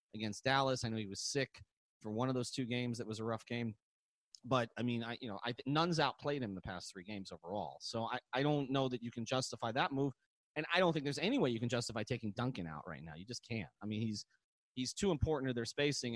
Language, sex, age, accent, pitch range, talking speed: English, male, 30-49, American, 105-135 Hz, 265 wpm